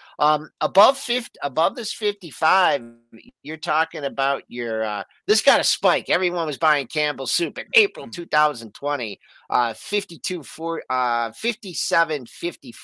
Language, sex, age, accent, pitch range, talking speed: English, male, 50-69, American, 130-190 Hz, 105 wpm